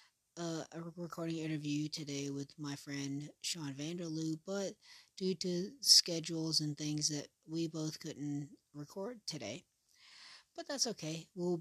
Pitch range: 140-185 Hz